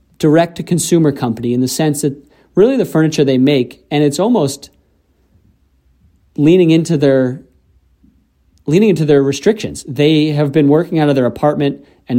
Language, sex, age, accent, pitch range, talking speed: English, male, 30-49, American, 125-155 Hz, 160 wpm